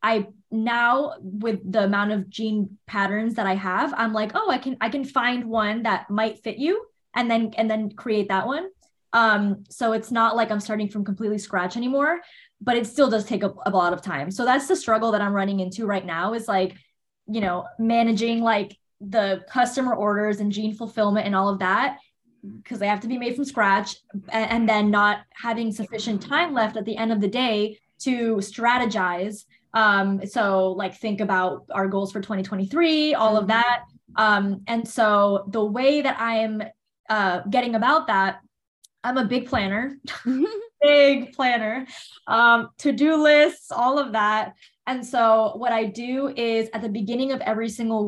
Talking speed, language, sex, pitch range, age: 185 wpm, English, female, 205-245 Hz, 10-29